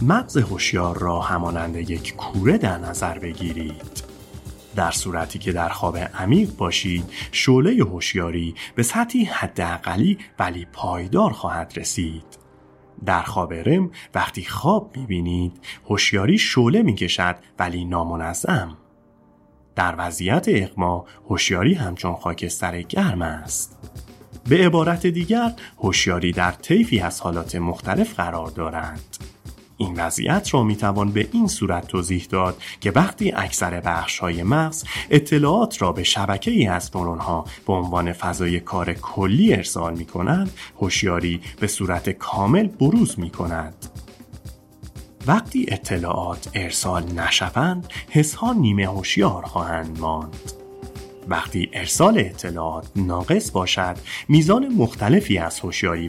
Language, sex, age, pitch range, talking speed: Persian, male, 30-49, 85-115 Hz, 115 wpm